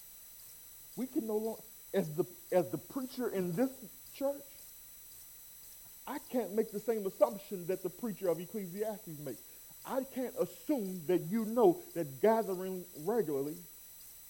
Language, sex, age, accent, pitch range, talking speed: English, male, 40-59, American, 180-245 Hz, 140 wpm